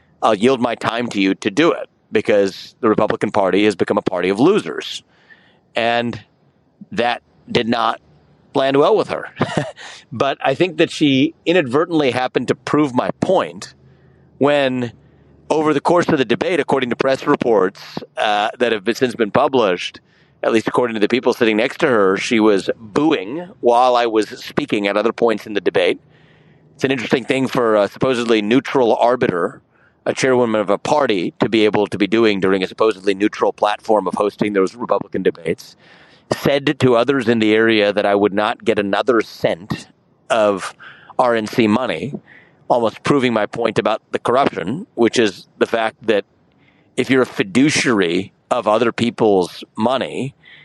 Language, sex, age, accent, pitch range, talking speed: English, male, 40-59, American, 105-130 Hz, 170 wpm